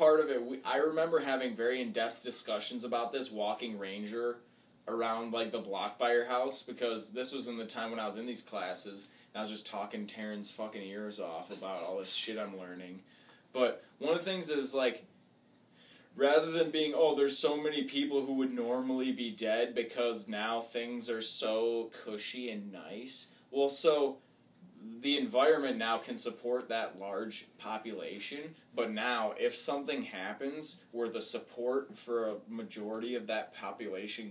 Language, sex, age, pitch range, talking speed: English, male, 20-39, 110-135 Hz, 175 wpm